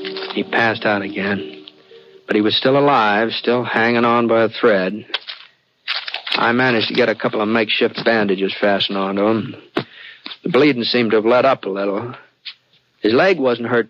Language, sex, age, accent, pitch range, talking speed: English, male, 60-79, American, 105-120 Hz, 175 wpm